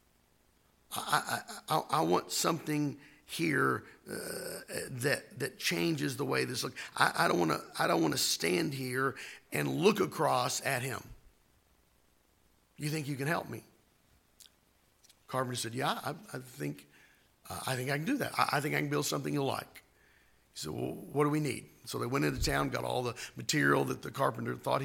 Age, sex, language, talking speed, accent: 50-69, male, English, 190 wpm, American